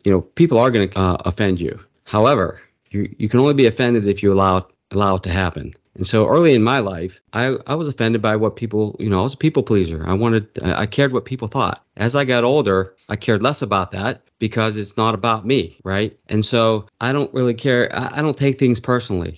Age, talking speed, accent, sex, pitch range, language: 30-49, 240 wpm, American, male, 100-120 Hz, English